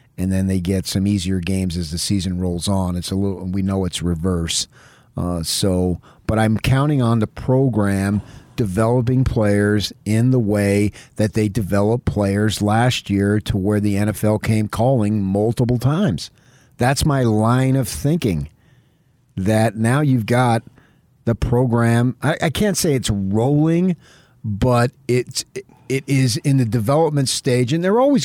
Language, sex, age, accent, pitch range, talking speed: English, male, 50-69, American, 110-150 Hz, 160 wpm